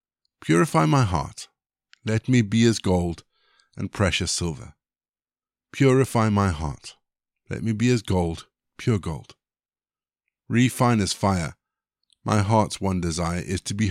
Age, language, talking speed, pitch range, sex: 50-69, English, 135 wpm, 95-125 Hz, male